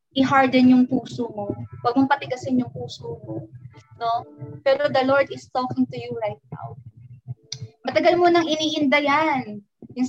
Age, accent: 20-39, native